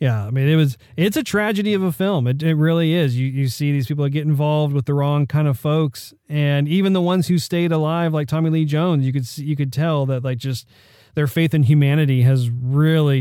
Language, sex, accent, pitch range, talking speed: English, male, American, 125-155 Hz, 245 wpm